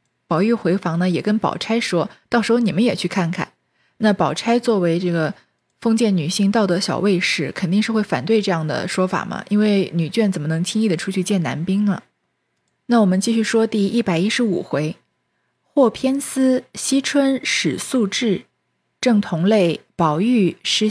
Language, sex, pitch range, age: Chinese, female, 165-230 Hz, 20-39